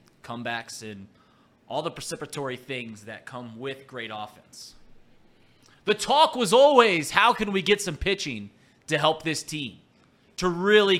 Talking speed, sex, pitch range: 145 wpm, male, 115-170 Hz